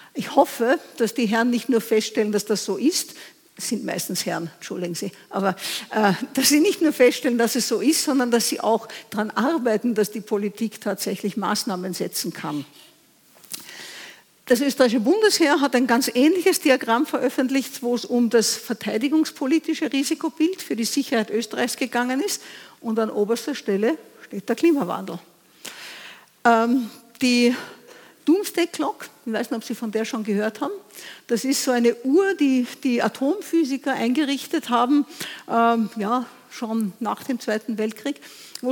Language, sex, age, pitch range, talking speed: English, female, 50-69, 220-275 Hz, 155 wpm